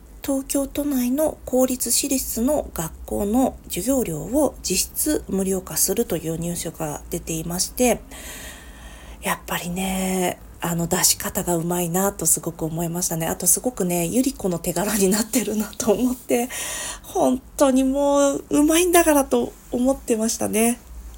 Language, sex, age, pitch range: Japanese, female, 40-59, 180-260 Hz